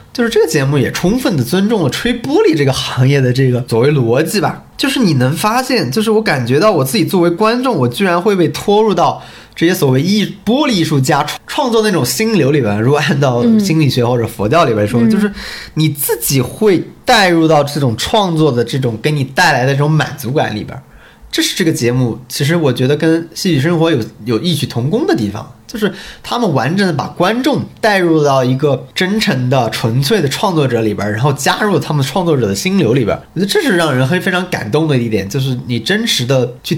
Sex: male